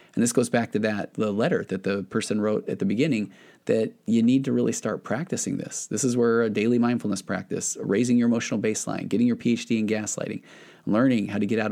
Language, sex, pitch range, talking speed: English, male, 105-120 Hz, 225 wpm